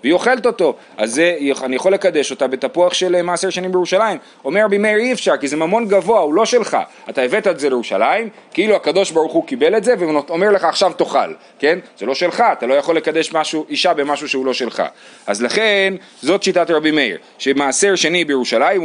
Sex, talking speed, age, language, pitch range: male, 110 wpm, 30-49, Hebrew, 140-205 Hz